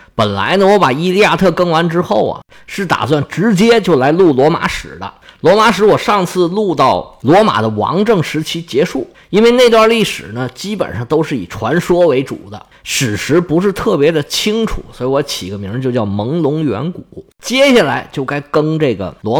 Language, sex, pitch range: Chinese, male, 120-200 Hz